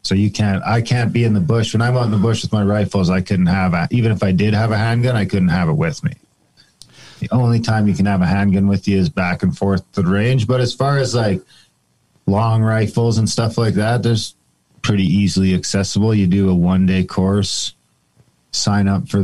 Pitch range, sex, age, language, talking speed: 95-115 Hz, male, 40-59, English, 230 wpm